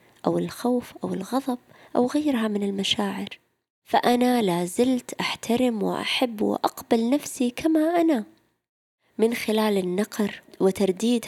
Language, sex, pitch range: Arabic, female, 195-235 Hz